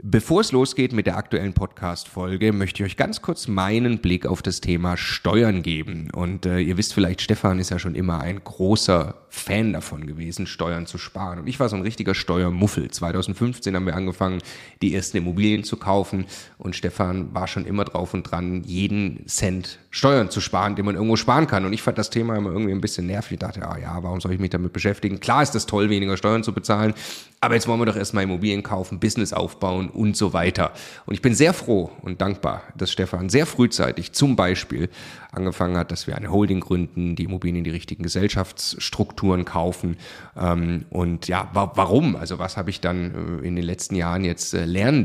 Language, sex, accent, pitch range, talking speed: German, male, German, 90-105 Hz, 205 wpm